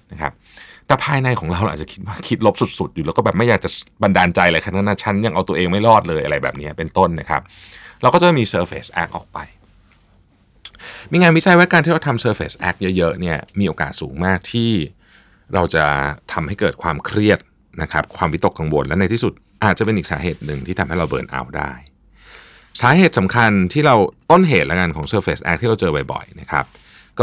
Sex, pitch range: male, 80-115 Hz